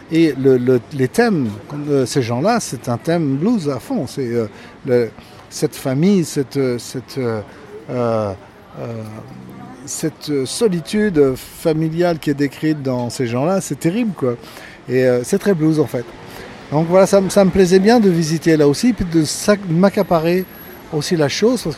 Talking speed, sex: 175 wpm, male